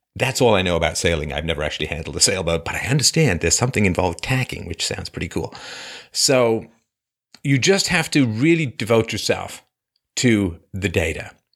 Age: 50-69